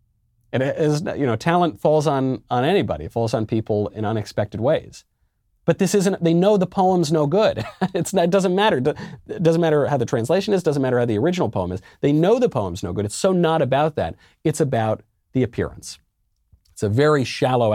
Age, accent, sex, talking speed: 40-59, American, male, 215 wpm